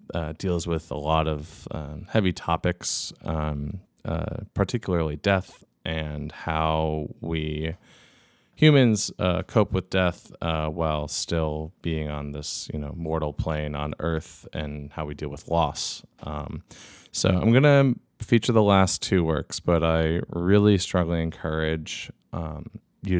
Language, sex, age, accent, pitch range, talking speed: English, male, 20-39, American, 80-95 Hz, 145 wpm